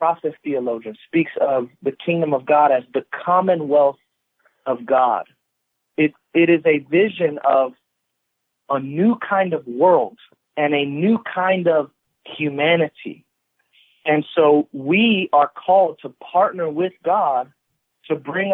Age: 40-59